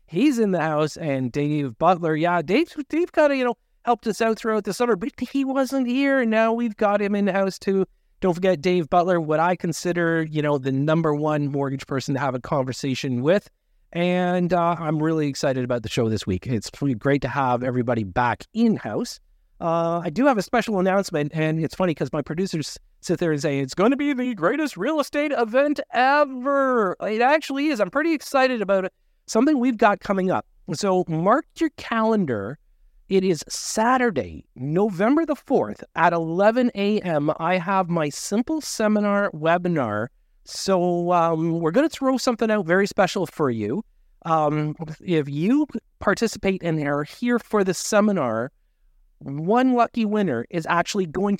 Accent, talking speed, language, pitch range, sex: American, 180 wpm, English, 155-225 Hz, male